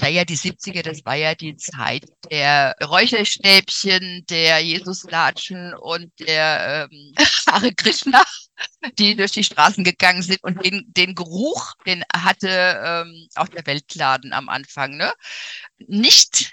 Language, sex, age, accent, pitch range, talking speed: German, female, 50-69, German, 160-200 Hz, 140 wpm